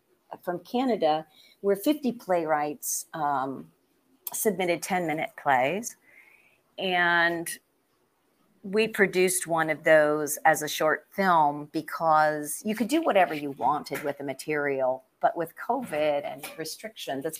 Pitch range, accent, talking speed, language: 150-185 Hz, American, 120 wpm, English